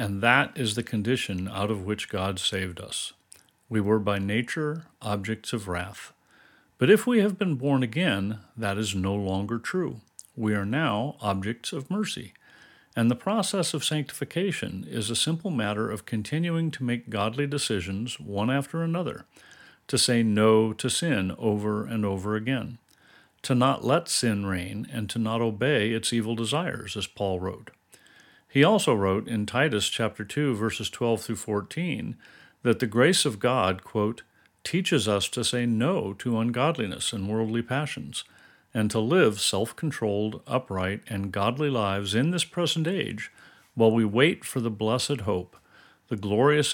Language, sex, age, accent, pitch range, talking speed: English, male, 40-59, American, 105-140 Hz, 160 wpm